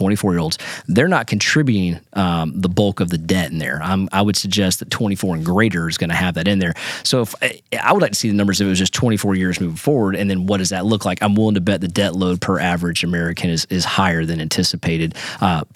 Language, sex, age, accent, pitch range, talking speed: English, male, 30-49, American, 95-120 Hz, 265 wpm